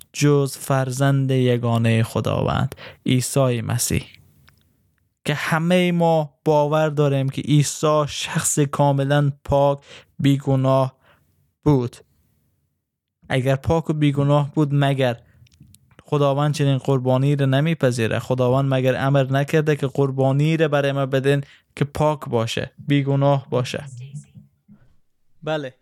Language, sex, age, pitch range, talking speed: Persian, male, 20-39, 125-145 Hz, 105 wpm